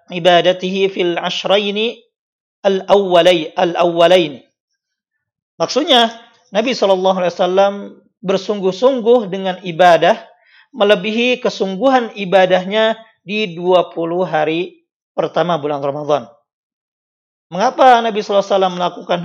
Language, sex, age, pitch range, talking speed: Indonesian, male, 50-69, 170-205 Hz, 80 wpm